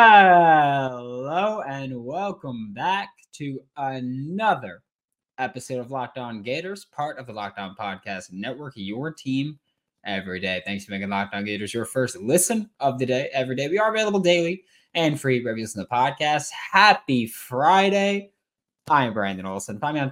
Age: 20-39